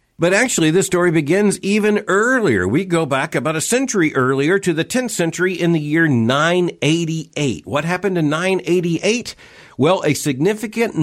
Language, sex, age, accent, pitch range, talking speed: English, male, 50-69, American, 130-180 Hz, 160 wpm